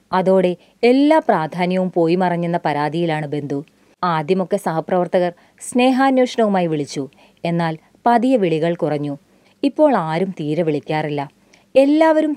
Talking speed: 95 wpm